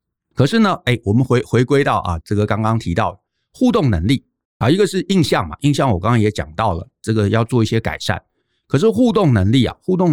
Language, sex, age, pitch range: Chinese, male, 50-69, 105-150 Hz